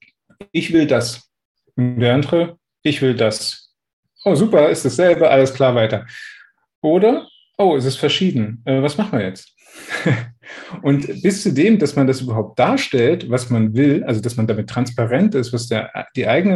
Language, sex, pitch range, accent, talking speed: German, male, 115-155 Hz, German, 180 wpm